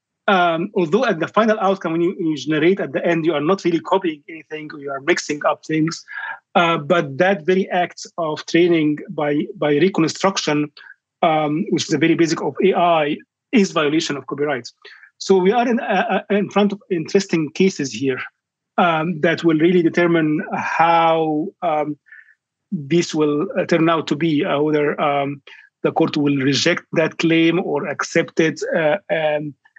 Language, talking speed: English, 170 wpm